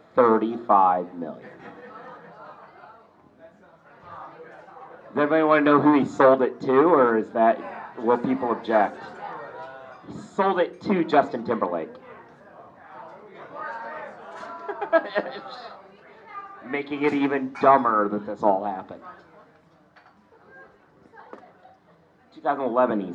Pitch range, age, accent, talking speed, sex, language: 110-170 Hz, 40-59, American, 85 wpm, male, English